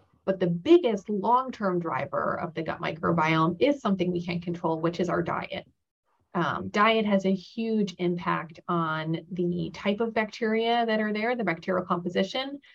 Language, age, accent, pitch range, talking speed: English, 30-49, American, 175-205 Hz, 165 wpm